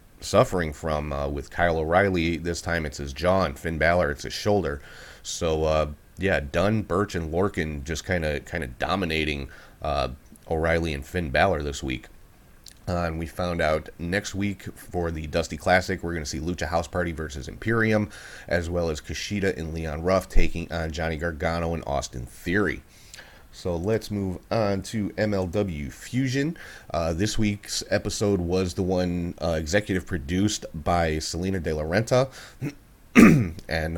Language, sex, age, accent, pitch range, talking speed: English, male, 30-49, American, 80-100 Hz, 160 wpm